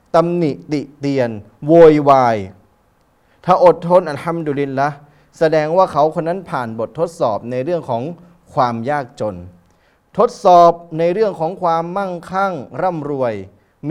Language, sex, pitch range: Thai, male, 145-195 Hz